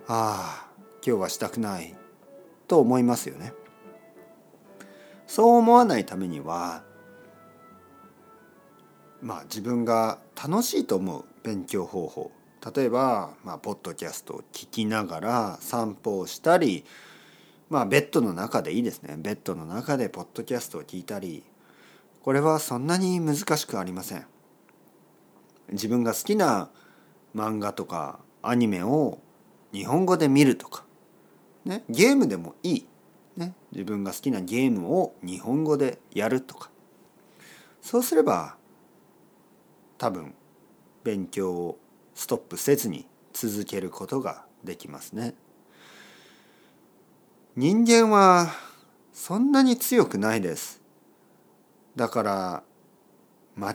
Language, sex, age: Japanese, male, 40-59